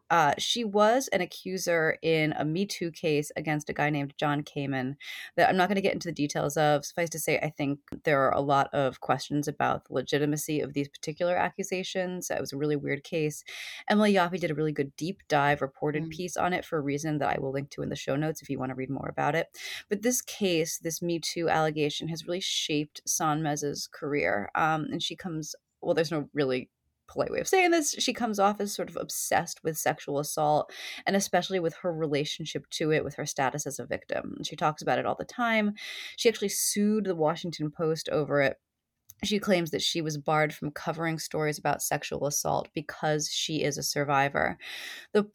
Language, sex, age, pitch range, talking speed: English, female, 30-49, 145-175 Hz, 220 wpm